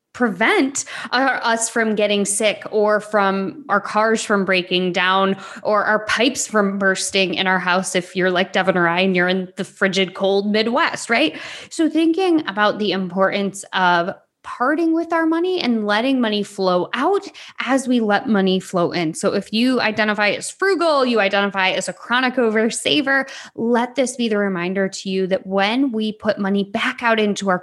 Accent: American